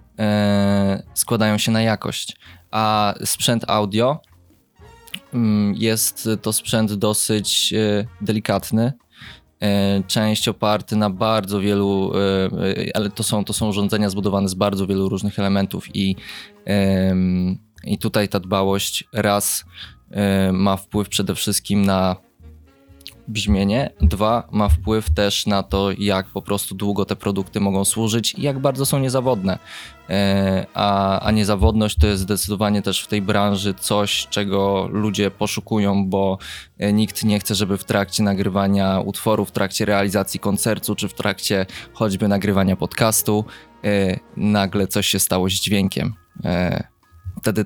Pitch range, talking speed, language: 95-105 Hz, 125 wpm, Polish